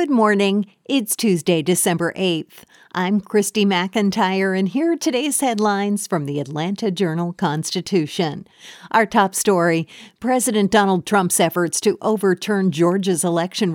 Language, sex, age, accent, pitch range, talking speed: English, female, 50-69, American, 175-215 Hz, 125 wpm